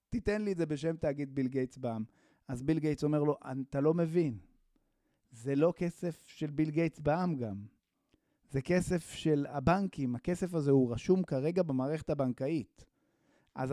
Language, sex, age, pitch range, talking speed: Hebrew, male, 30-49, 140-185 Hz, 155 wpm